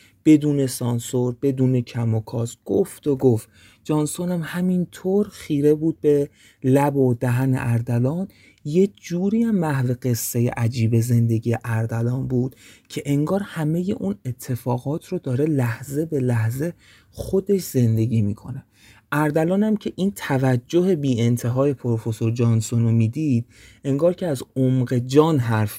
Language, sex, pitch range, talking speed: Persian, male, 115-150 Hz, 130 wpm